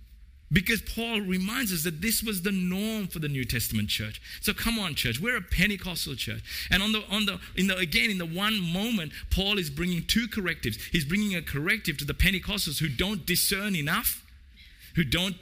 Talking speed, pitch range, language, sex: 200 wpm, 125-185 Hz, English, male